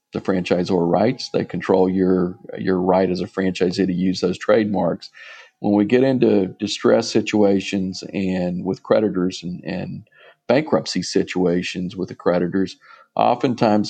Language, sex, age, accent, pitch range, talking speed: English, male, 50-69, American, 90-105 Hz, 140 wpm